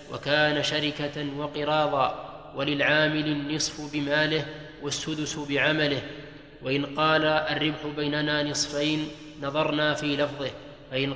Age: 20-39